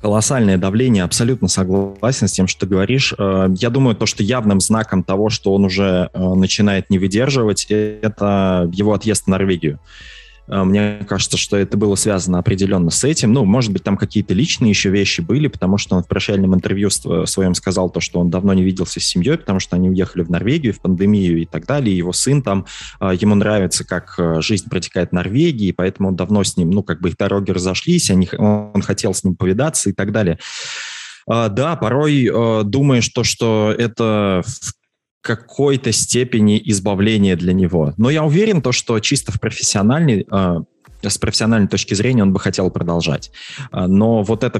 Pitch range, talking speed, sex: 95-115 Hz, 175 wpm, male